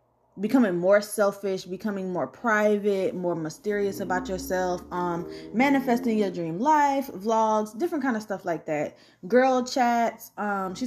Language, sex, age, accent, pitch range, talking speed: English, female, 20-39, American, 175-225 Hz, 145 wpm